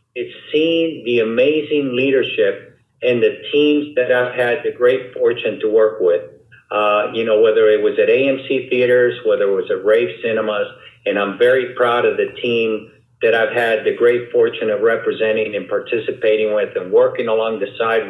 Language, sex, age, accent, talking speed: English, male, 50-69, American, 180 wpm